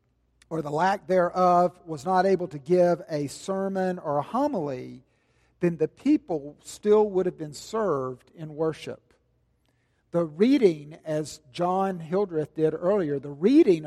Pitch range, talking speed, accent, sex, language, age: 150-195 Hz, 145 wpm, American, male, English, 50-69